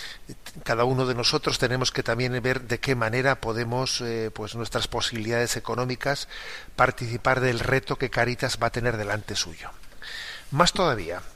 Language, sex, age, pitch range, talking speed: Spanish, male, 40-59, 120-135 Hz, 155 wpm